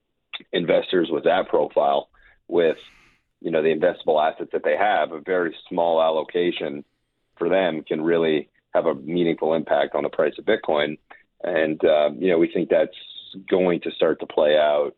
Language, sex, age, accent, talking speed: English, male, 40-59, American, 170 wpm